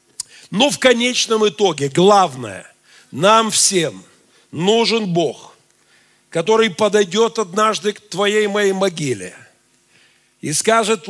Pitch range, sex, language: 150-235 Hz, male, Russian